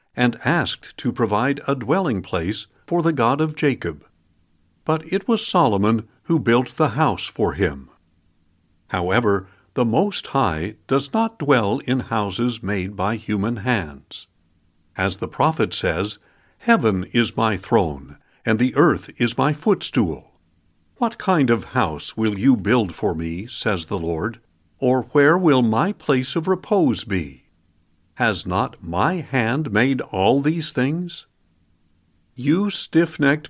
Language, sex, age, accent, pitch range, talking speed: English, male, 60-79, American, 95-155 Hz, 140 wpm